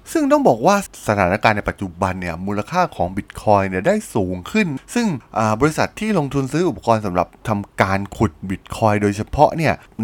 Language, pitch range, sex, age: Thai, 105-165 Hz, male, 20-39